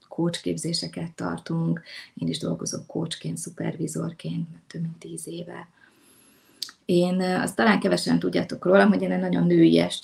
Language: Hungarian